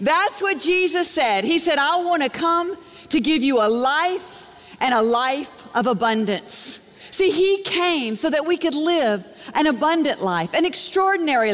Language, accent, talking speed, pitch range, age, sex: English, American, 165 wpm, 280-375 Hz, 50-69, female